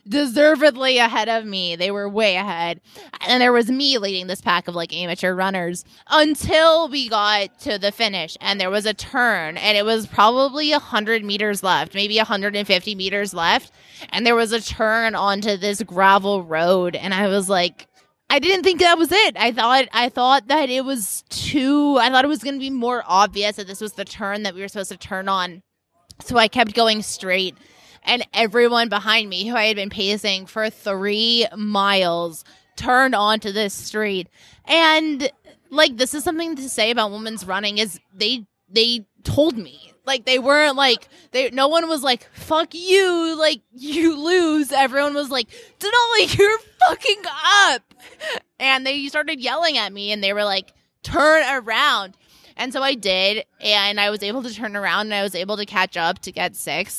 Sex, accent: female, American